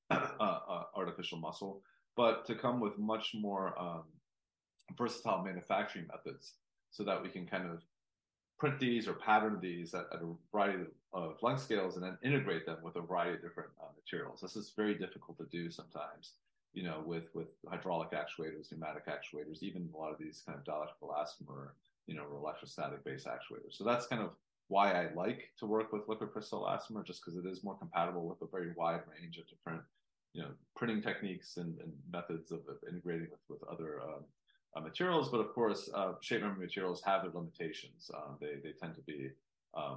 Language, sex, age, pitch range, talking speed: English, male, 30-49, 85-110 Hz, 195 wpm